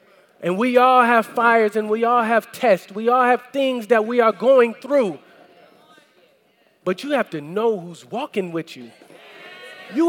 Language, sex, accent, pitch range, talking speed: English, male, American, 185-255 Hz, 170 wpm